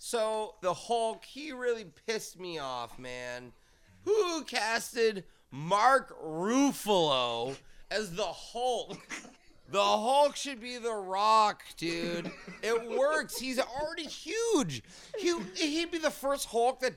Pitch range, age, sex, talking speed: 200-275 Hz, 30-49, male, 125 wpm